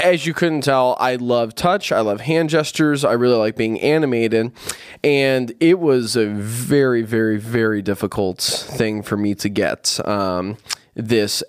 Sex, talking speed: male, 160 wpm